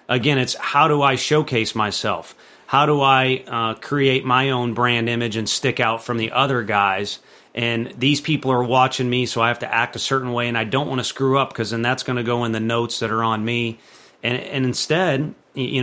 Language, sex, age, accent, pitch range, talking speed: English, male, 30-49, American, 120-140 Hz, 230 wpm